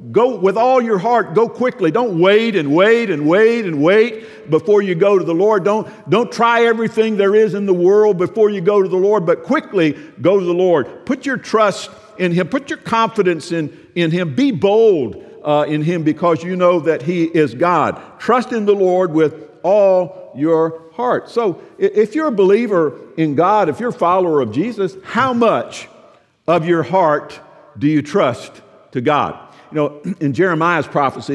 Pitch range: 150-205 Hz